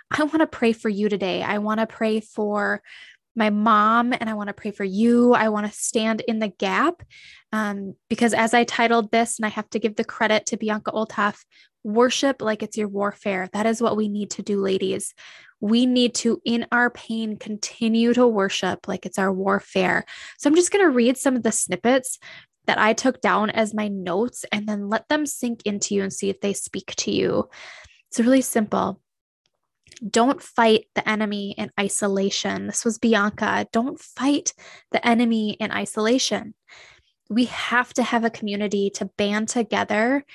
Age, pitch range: 10-29, 205-235 Hz